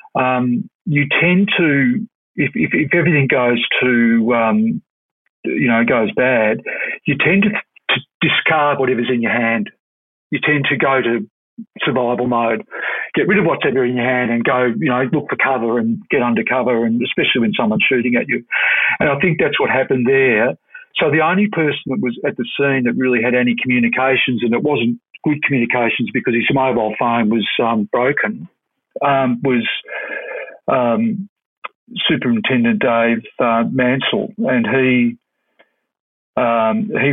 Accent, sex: Australian, male